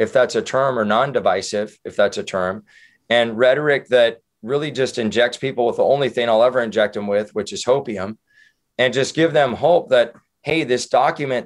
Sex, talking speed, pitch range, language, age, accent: male, 205 wpm, 120-150 Hz, English, 30-49, American